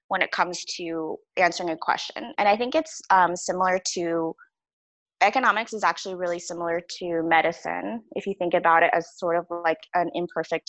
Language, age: English, 20-39